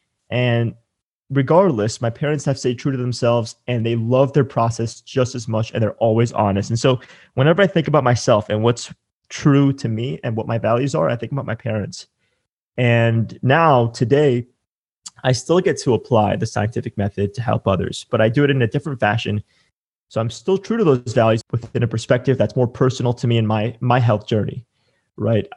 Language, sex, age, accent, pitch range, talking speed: English, male, 20-39, American, 115-140 Hz, 200 wpm